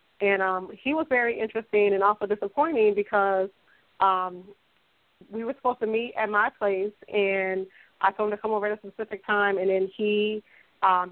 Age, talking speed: 20-39, 185 wpm